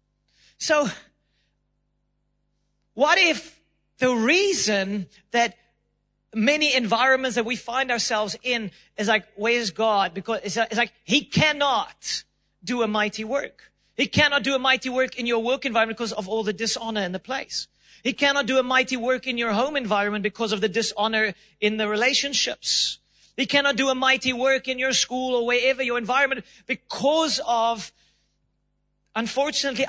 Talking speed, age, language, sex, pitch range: 160 wpm, 40-59, English, male, 215-270 Hz